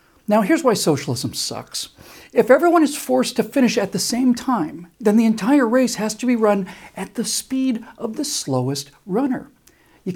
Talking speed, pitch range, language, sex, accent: 185 wpm, 155-240 Hz, English, male, American